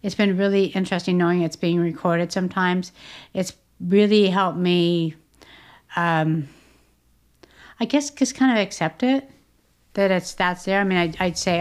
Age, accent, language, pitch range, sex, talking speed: 50-69, American, English, 165-185 Hz, female, 155 wpm